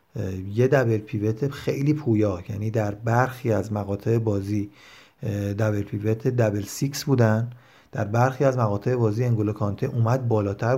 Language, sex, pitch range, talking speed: Persian, male, 110-130 Hz, 140 wpm